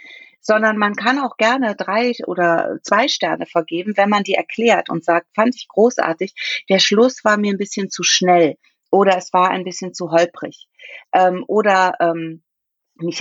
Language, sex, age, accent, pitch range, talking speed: German, female, 40-59, German, 165-235 Hz, 175 wpm